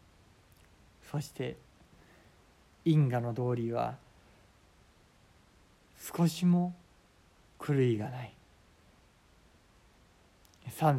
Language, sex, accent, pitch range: Japanese, male, native, 110-155 Hz